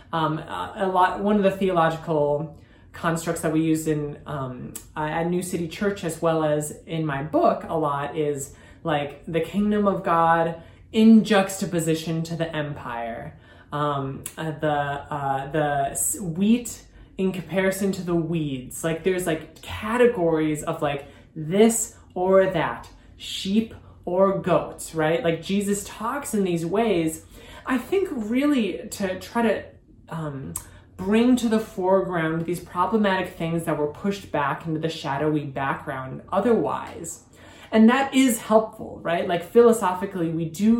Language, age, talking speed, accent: English, 20-39, 145 wpm, American